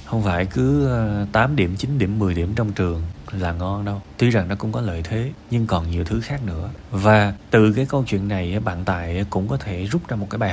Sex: male